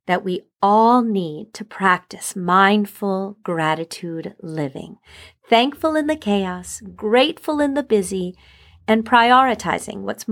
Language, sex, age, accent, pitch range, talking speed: English, female, 40-59, American, 200-245 Hz, 115 wpm